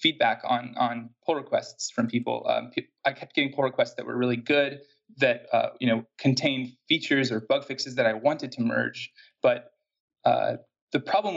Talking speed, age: 185 wpm, 20-39